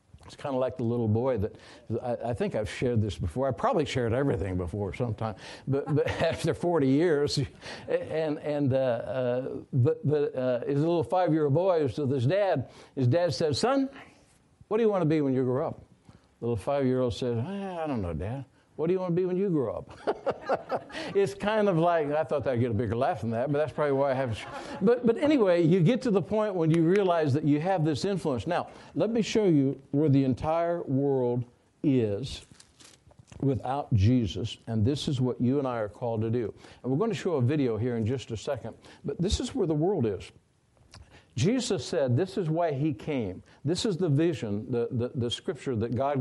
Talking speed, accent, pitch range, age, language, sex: 210 wpm, American, 120-160 Hz, 60-79, English, male